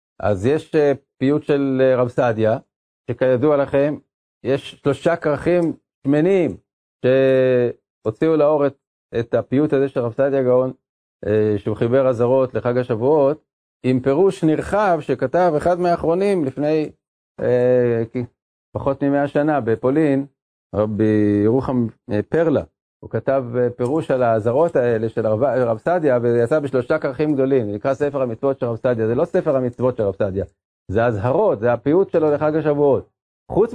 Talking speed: 135 wpm